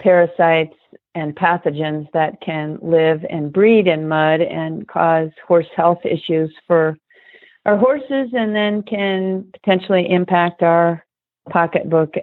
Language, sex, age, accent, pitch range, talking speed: English, female, 40-59, American, 165-190 Hz, 125 wpm